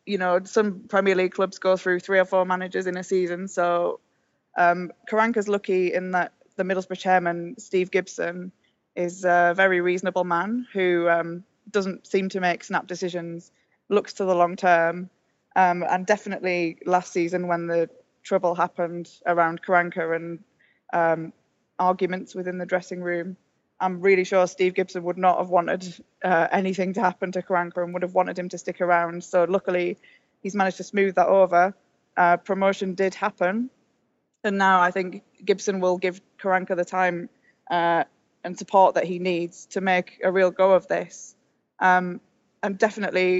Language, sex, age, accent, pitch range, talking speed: English, female, 20-39, British, 175-190 Hz, 170 wpm